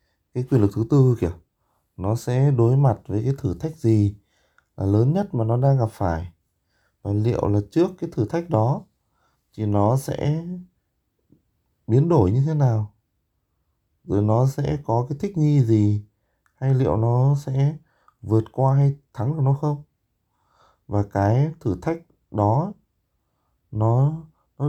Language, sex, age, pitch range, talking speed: Vietnamese, male, 20-39, 100-140 Hz, 160 wpm